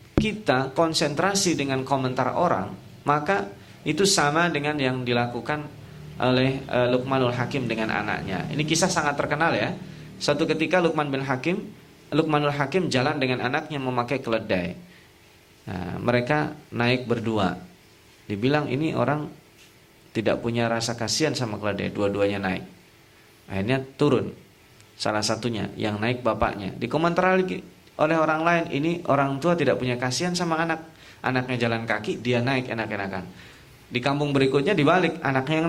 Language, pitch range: Indonesian, 120-165 Hz